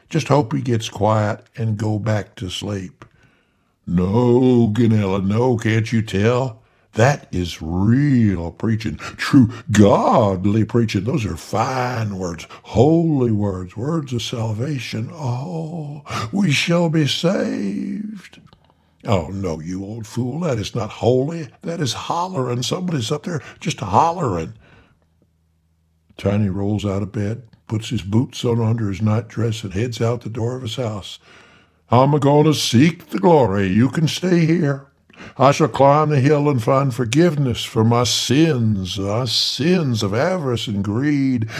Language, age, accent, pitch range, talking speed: English, 60-79, American, 100-135 Hz, 145 wpm